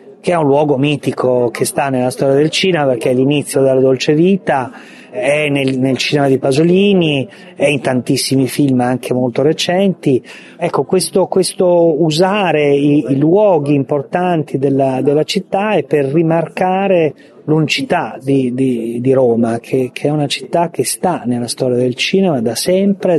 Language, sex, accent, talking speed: English, male, Italian, 160 wpm